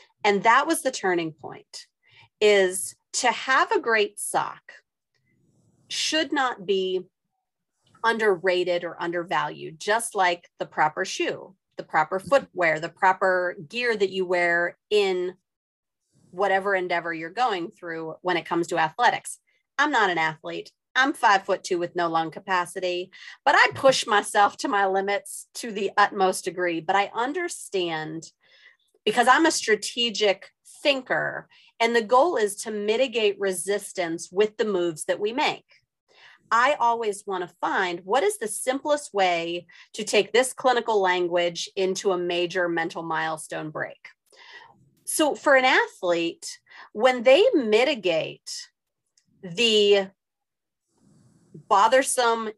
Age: 40-59